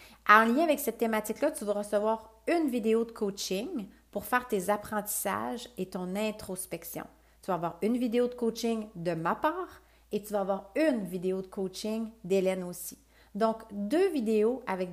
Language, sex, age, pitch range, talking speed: French, female, 40-59, 185-230 Hz, 175 wpm